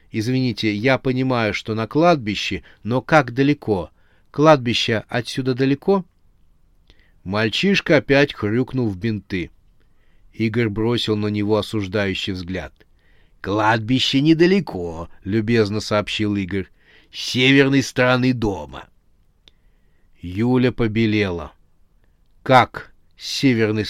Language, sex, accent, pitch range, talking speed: Russian, male, native, 95-130 Hz, 95 wpm